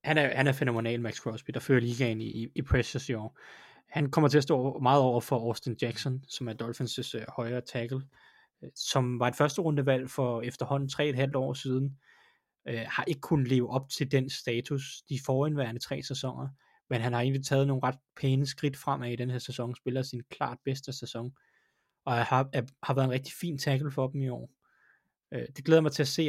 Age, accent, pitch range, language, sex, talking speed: 20-39, native, 120-135 Hz, Danish, male, 215 wpm